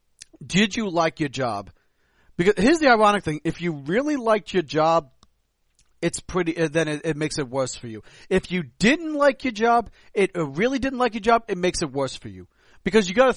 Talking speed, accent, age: 215 wpm, American, 40-59